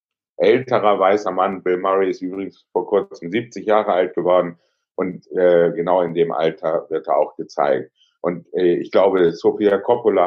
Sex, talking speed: male, 170 wpm